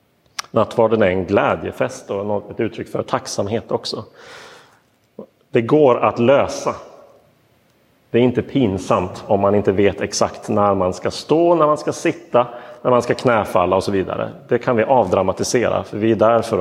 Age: 30-49